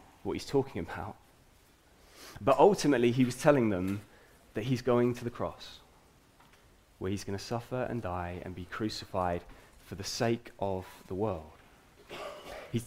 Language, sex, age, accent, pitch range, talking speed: English, male, 20-39, British, 95-120 Hz, 155 wpm